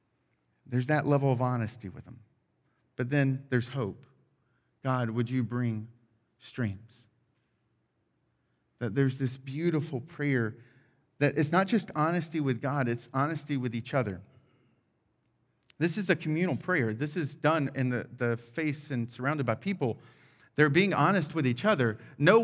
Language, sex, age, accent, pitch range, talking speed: English, male, 30-49, American, 125-190 Hz, 150 wpm